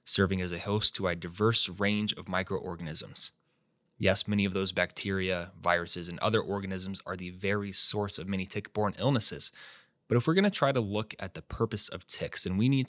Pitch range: 95-125 Hz